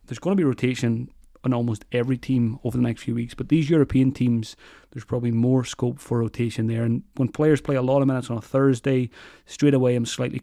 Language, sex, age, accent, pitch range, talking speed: English, male, 30-49, British, 120-140 Hz, 230 wpm